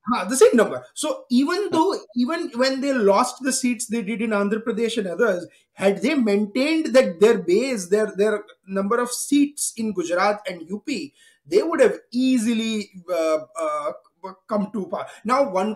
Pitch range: 200-245 Hz